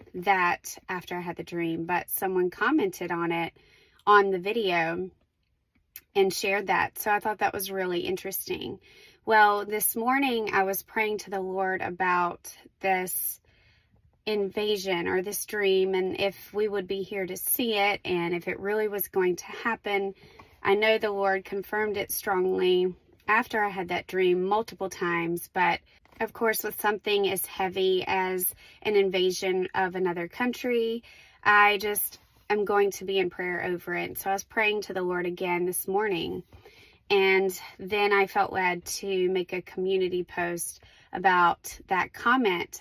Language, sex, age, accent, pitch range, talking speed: English, female, 20-39, American, 180-205 Hz, 165 wpm